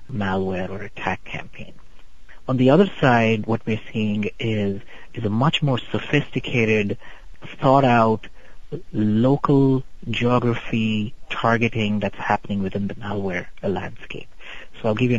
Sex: male